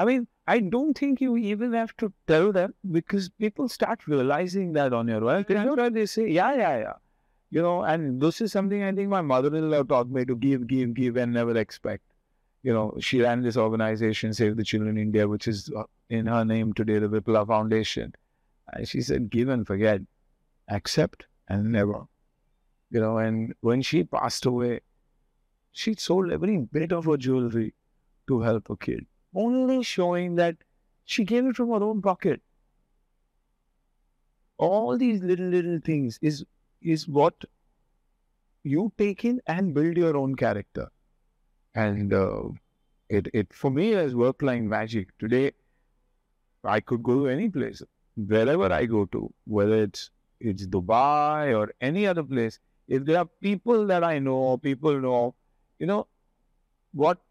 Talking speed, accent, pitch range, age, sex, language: 165 wpm, Indian, 110-185 Hz, 50-69, male, English